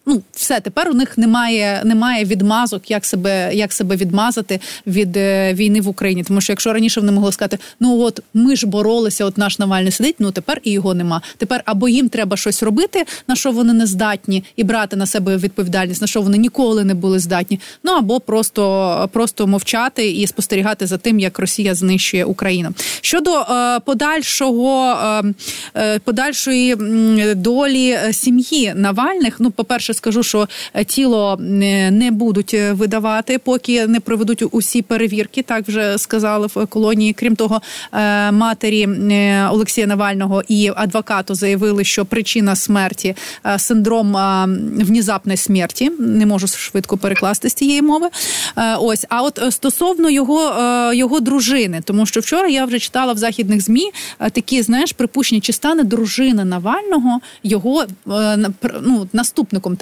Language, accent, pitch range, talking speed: Ukrainian, native, 200-245 Hz, 145 wpm